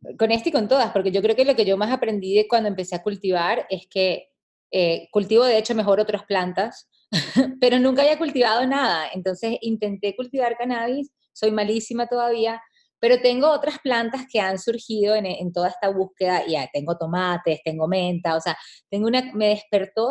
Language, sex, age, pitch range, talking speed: Spanish, female, 20-39, 180-235 Hz, 190 wpm